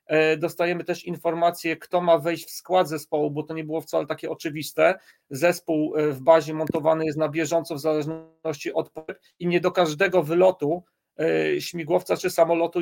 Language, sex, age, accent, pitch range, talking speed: Polish, male, 40-59, native, 155-175 Hz, 160 wpm